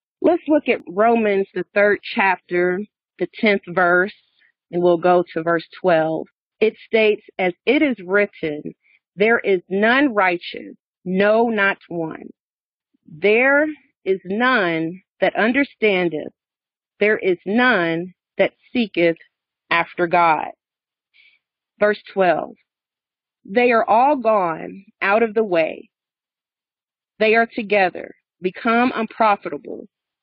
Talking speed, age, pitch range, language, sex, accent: 110 wpm, 40-59, 180-235 Hz, English, female, American